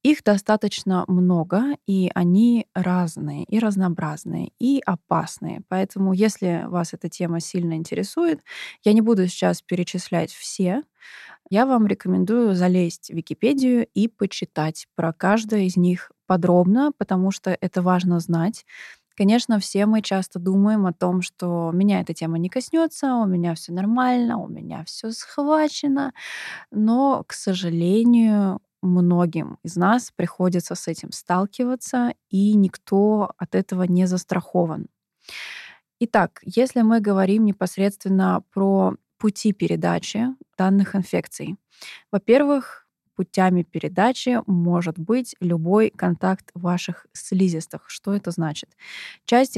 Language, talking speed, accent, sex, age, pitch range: Russian, 120 wpm, native, female, 20-39, 180-220 Hz